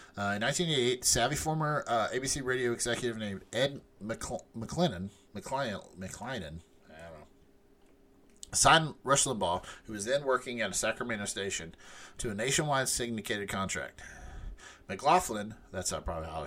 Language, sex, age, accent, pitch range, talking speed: English, male, 30-49, American, 95-125 Hz, 120 wpm